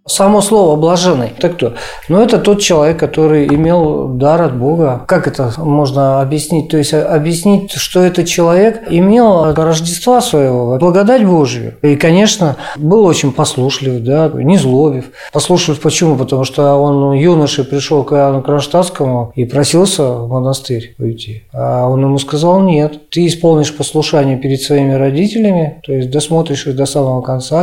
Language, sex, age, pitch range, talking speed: Russian, male, 40-59, 135-165 Hz, 150 wpm